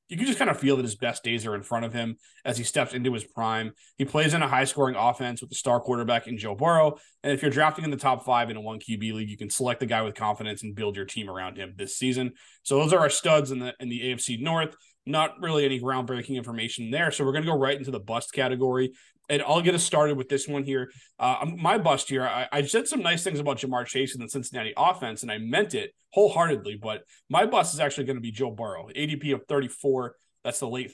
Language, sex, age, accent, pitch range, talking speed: English, male, 30-49, American, 120-150 Hz, 260 wpm